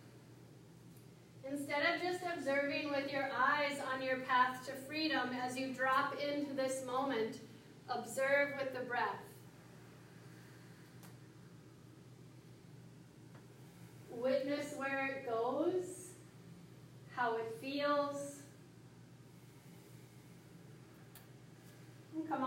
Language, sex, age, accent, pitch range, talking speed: English, female, 30-49, American, 260-300 Hz, 85 wpm